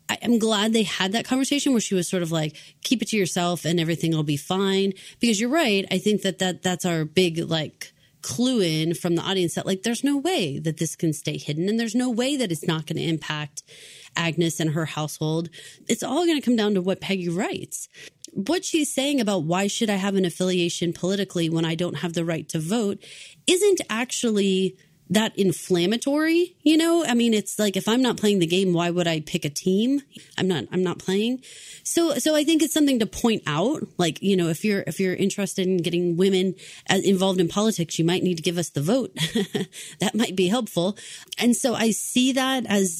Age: 30-49